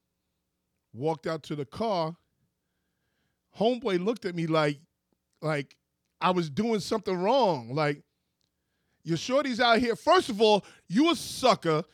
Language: English